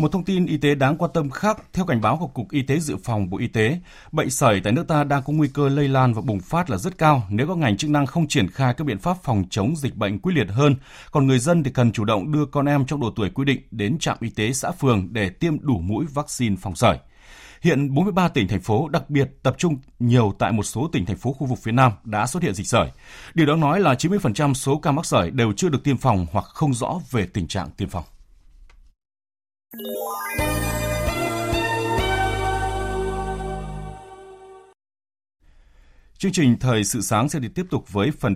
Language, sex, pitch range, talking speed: Vietnamese, male, 105-150 Hz, 220 wpm